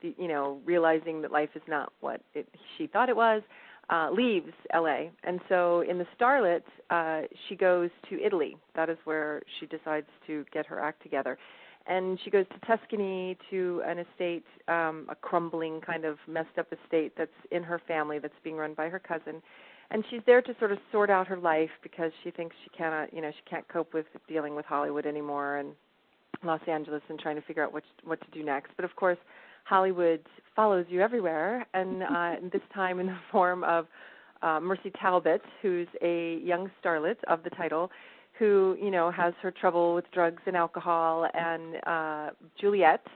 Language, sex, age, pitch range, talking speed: English, female, 40-59, 155-185 Hz, 190 wpm